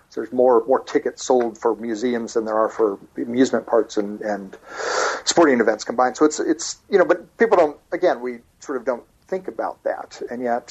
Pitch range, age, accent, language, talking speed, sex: 115-155 Hz, 50-69, American, English, 200 wpm, male